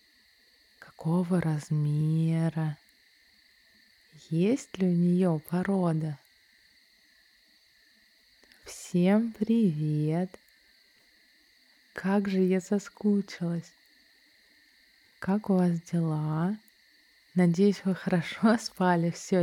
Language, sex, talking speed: Russian, female, 70 wpm